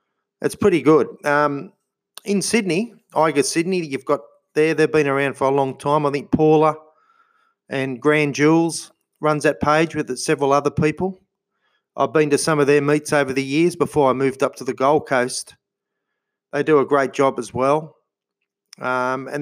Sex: male